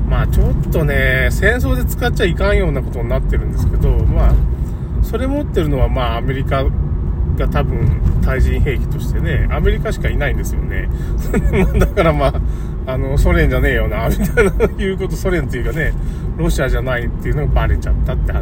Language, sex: Japanese, male